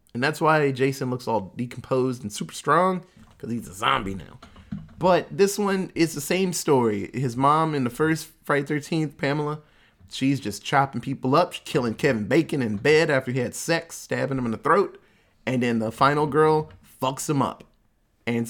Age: 20-39